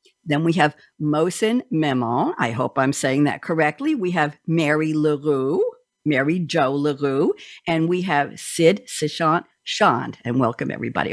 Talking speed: 145 wpm